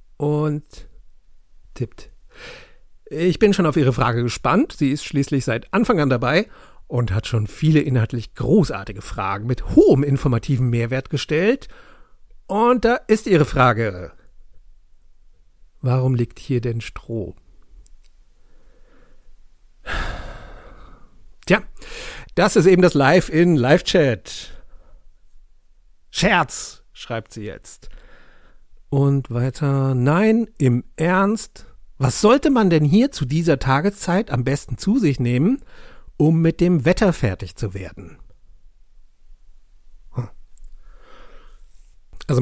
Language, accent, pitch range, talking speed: German, German, 100-155 Hz, 105 wpm